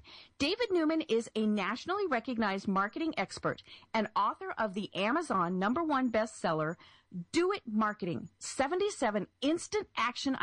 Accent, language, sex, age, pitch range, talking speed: American, English, female, 40-59, 195-310 Hz, 125 wpm